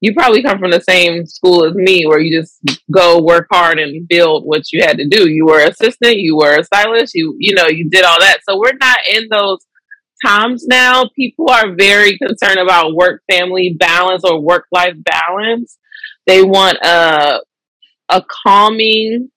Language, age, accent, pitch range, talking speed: English, 20-39, American, 175-230 Hz, 190 wpm